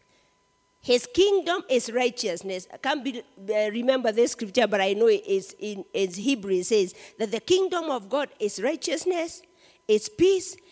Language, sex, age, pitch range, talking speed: English, female, 50-69, 235-315 Hz, 175 wpm